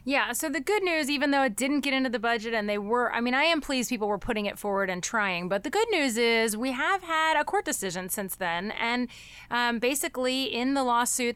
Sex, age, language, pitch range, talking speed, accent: female, 30-49, English, 215-275 Hz, 250 wpm, American